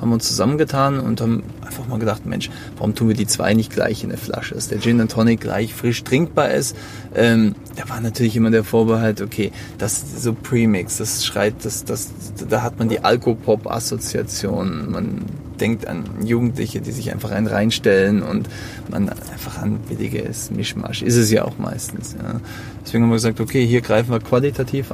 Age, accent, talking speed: 20-39, German, 190 wpm